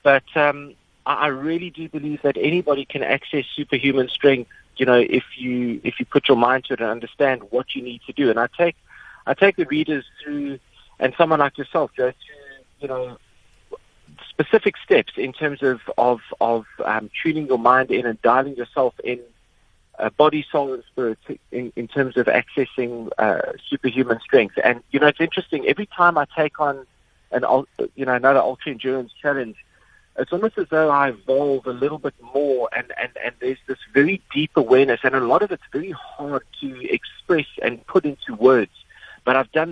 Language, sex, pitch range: English, male, 125-150 Hz